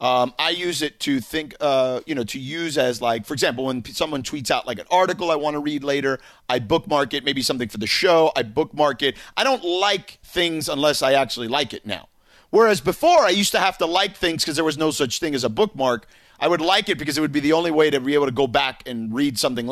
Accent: American